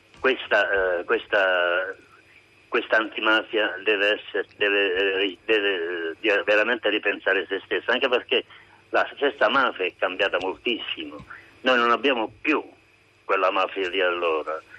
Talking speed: 115 wpm